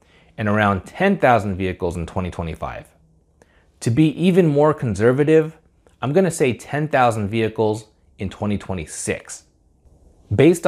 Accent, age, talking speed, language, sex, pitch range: American, 30-49, 105 wpm, English, male, 90-135 Hz